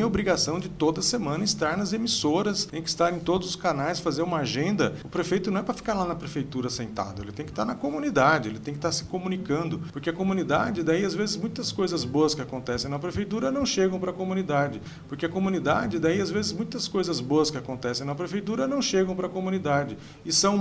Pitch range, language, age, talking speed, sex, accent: 135-185 Hz, Portuguese, 40-59, 225 wpm, male, Brazilian